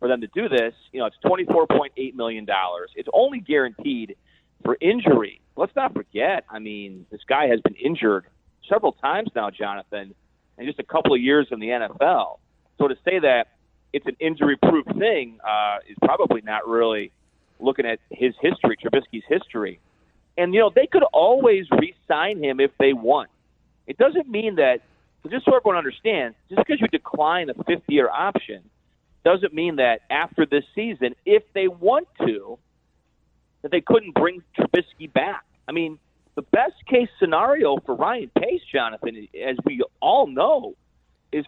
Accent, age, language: American, 40-59, English